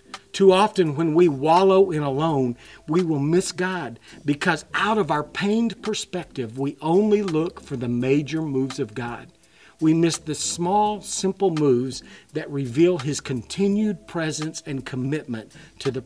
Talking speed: 155 wpm